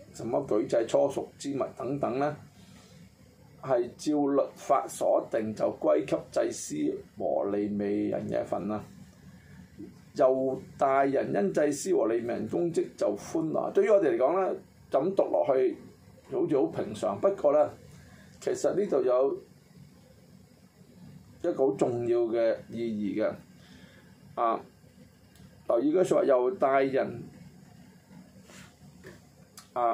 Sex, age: male, 20-39